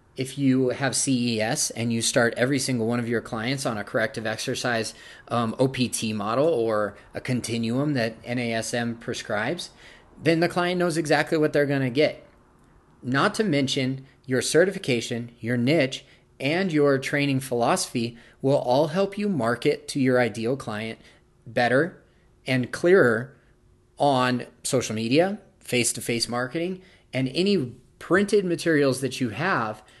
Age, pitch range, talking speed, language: 30-49, 120-150 Hz, 145 wpm, English